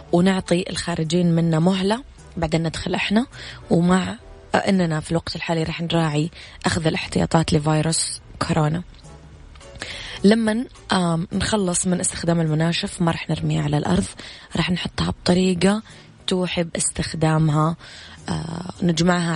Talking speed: 110 wpm